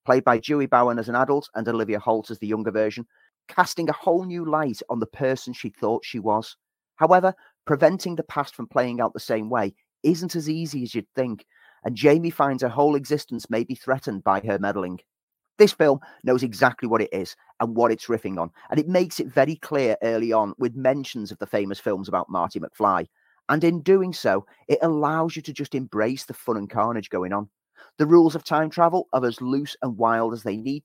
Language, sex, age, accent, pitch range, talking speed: English, male, 30-49, British, 115-155 Hz, 220 wpm